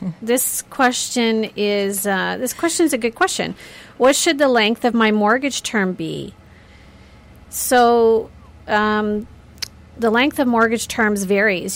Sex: female